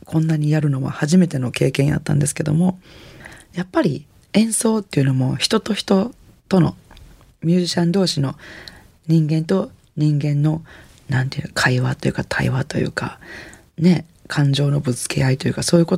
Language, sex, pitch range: Japanese, female, 140-185 Hz